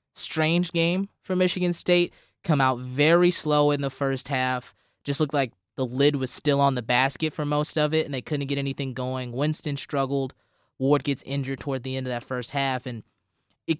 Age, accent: 20-39, American